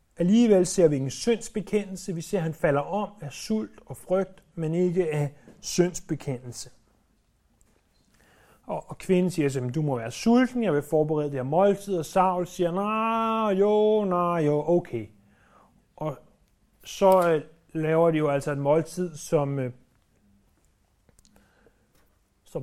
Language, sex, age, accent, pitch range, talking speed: Danish, male, 30-49, native, 140-190 Hz, 140 wpm